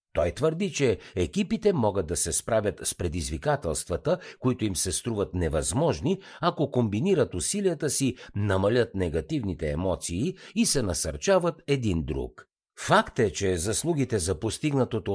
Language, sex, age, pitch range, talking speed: Bulgarian, male, 60-79, 85-140 Hz, 130 wpm